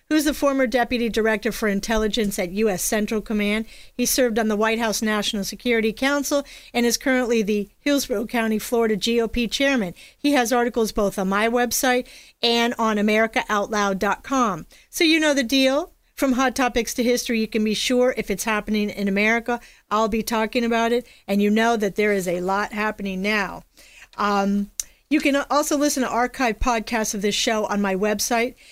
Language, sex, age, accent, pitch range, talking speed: English, female, 40-59, American, 210-245 Hz, 180 wpm